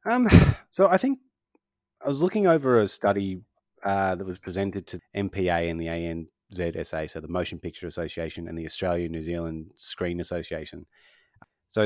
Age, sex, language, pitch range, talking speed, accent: 30-49, male, English, 85-100 Hz, 160 wpm, Australian